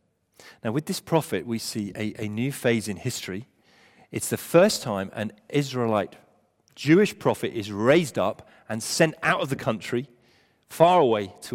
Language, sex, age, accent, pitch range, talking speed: English, male, 40-59, British, 115-160 Hz, 165 wpm